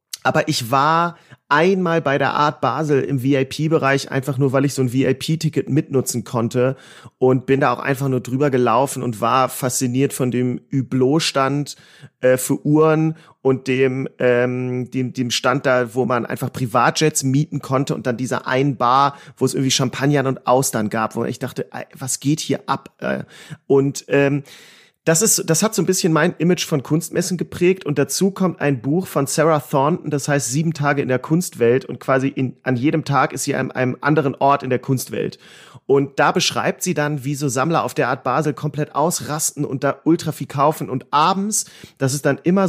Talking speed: 195 wpm